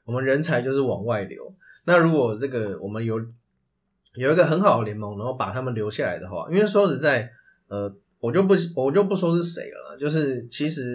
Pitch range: 115-160 Hz